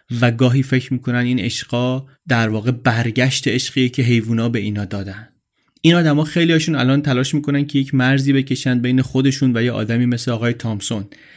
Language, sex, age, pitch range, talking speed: Persian, male, 30-49, 115-140 Hz, 180 wpm